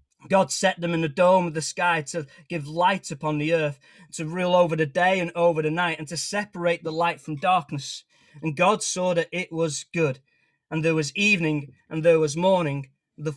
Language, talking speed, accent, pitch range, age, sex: English, 215 wpm, British, 155-190 Hz, 20-39, male